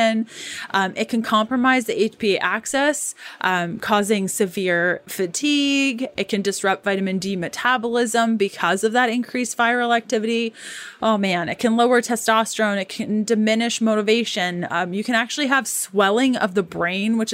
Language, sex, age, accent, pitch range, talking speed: English, female, 20-39, American, 195-240 Hz, 150 wpm